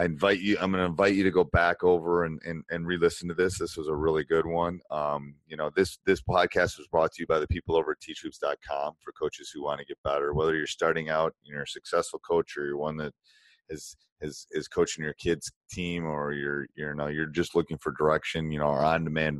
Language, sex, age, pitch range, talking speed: English, male, 30-49, 75-85 Hz, 245 wpm